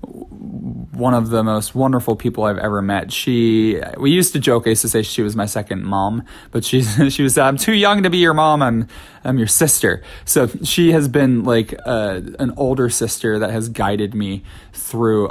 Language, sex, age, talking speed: English, male, 20-39, 200 wpm